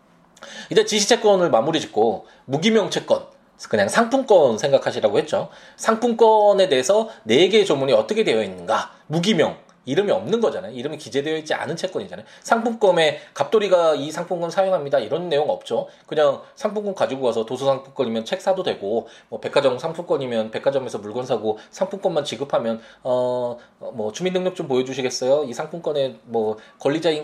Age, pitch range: 20-39, 130-215 Hz